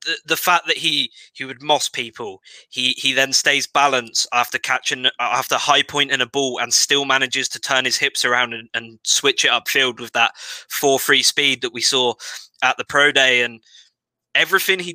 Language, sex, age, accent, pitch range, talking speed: English, male, 20-39, British, 130-150 Hz, 195 wpm